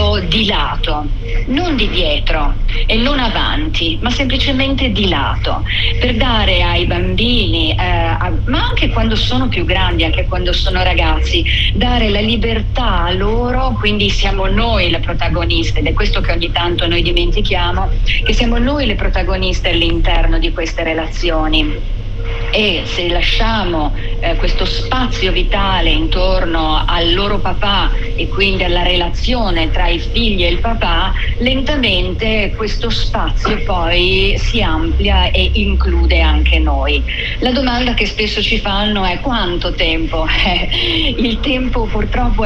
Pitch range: 95-130 Hz